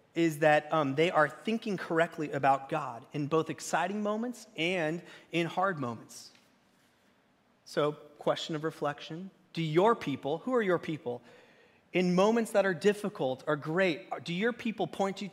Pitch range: 155-200 Hz